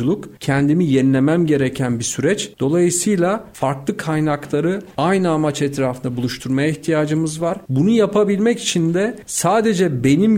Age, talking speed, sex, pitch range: 50-69, 115 wpm, male, 140-200 Hz